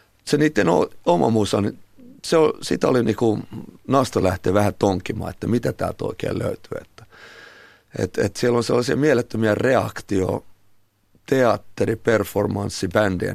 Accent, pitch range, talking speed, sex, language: native, 95-110 Hz, 105 wpm, male, Finnish